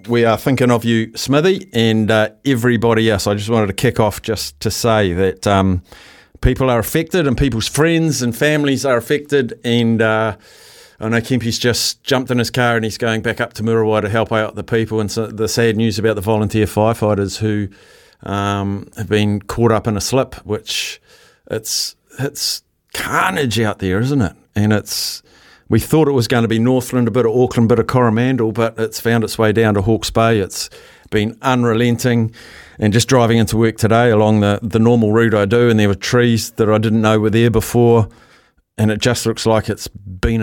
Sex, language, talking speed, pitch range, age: male, English, 210 wpm, 105-120 Hz, 50-69